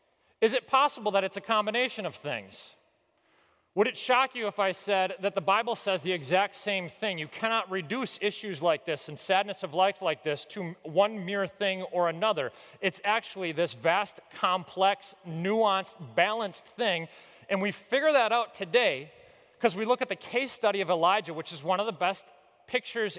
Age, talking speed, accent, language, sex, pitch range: 30-49, 185 wpm, American, English, male, 170-225 Hz